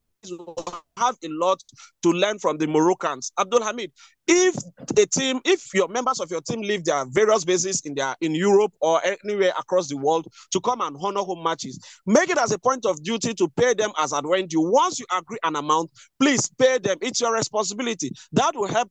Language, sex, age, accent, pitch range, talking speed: English, male, 30-49, Nigerian, 170-250 Hz, 205 wpm